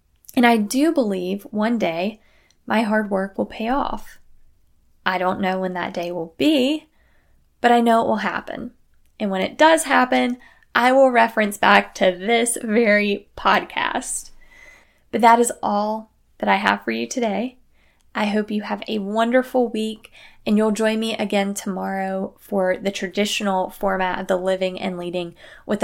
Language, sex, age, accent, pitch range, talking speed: English, female, 10-29, American, 190-245 Hz, 165 wpm